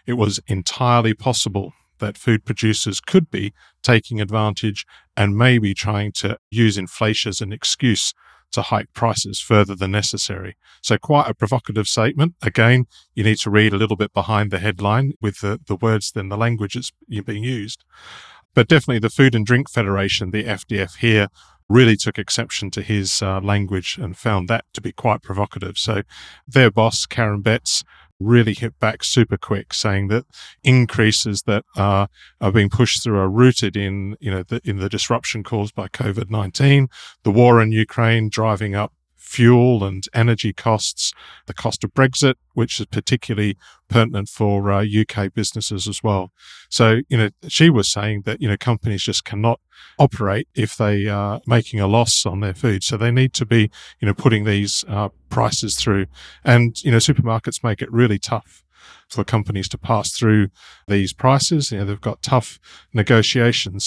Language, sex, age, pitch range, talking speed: English, male, 40-59, 100-115 Hz, 175 wpm